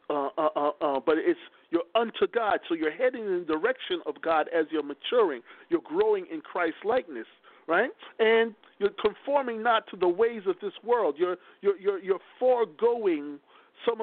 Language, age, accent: English, 50-69, American